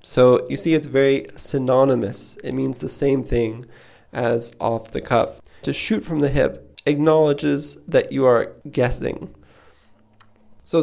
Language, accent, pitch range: English, American, 120-150 Hz